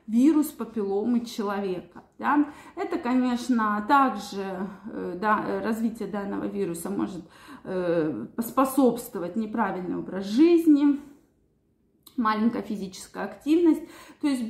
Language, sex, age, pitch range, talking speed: Russian, female, 20-39, 225-300 Hz, 85 wpm